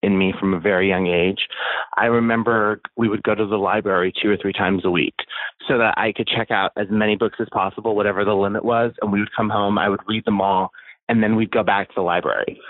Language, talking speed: English, 255 wpm